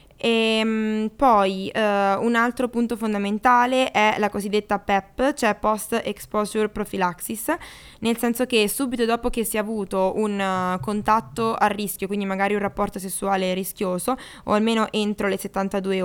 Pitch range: 195-230 Hz